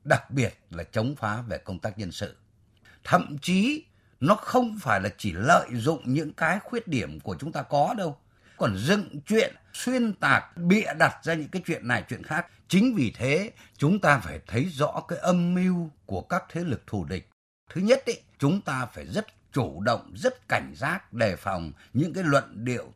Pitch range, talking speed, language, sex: 110-180 Hz, 200 wpm, Vietnamese, male